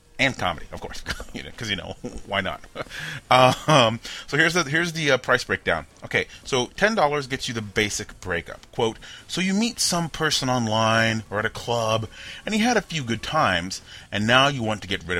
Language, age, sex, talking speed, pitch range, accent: English, 30-49, male, 200 wpm, 100-130 Hz, American